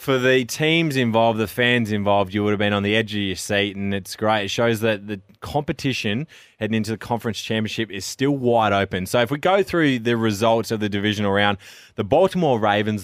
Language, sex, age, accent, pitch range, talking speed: English, male, 20-39, Australian, 105-125 Hz, 220 wpm